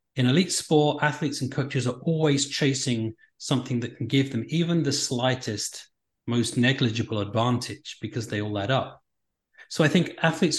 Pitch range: 120-145 Hz